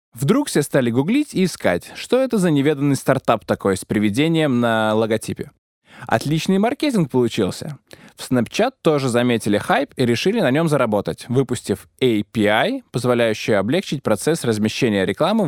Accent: native